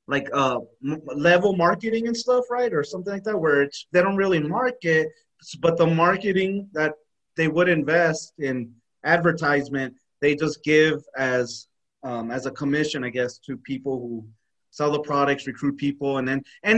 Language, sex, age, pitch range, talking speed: English, male, 30-49, 170-250 Hz, 170 wpm